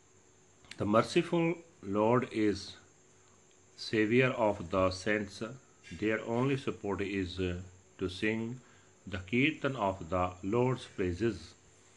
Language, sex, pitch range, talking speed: Punjabi, male, 95-125 Hz, 100 wpm